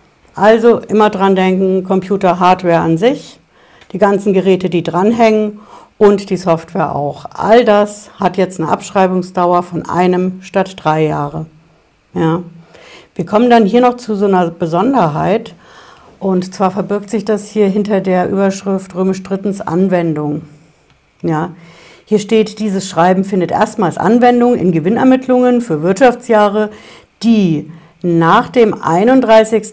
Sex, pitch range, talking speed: female, 170-210 Hz, 135 wpm